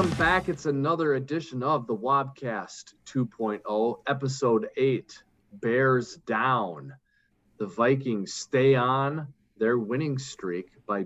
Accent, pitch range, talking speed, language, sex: American, 110-135 Hz, 115 wpm, English, male